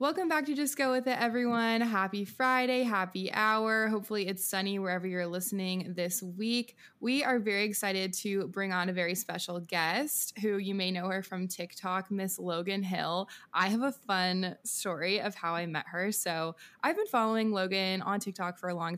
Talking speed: 195 wpm